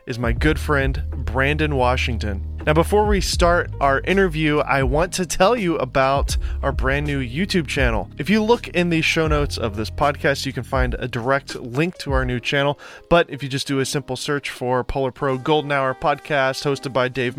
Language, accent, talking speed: English, American, 205 wpm